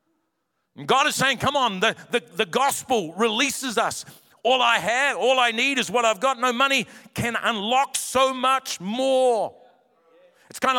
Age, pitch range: 50-69, 215-260 Hz